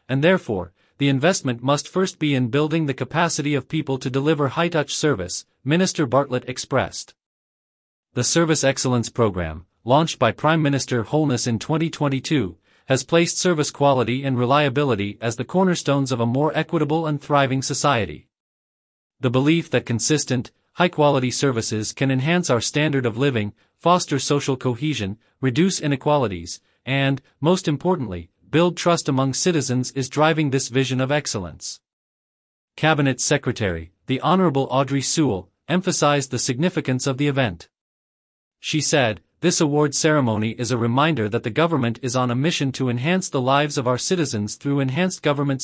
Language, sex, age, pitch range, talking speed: English, male, 40-59, 125-155 Hz, 150 wpm